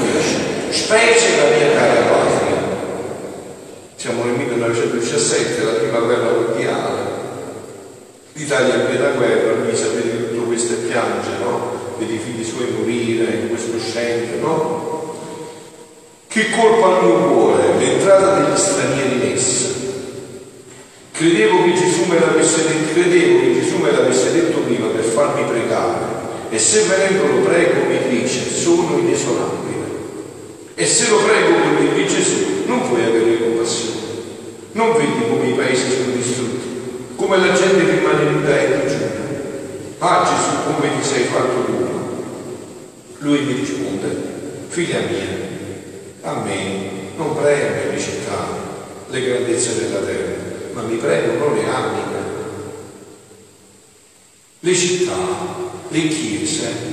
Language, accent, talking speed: Italian, native, 125 wpm